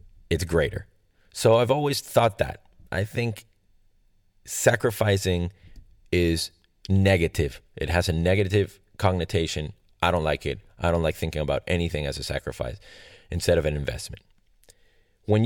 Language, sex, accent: English, male, American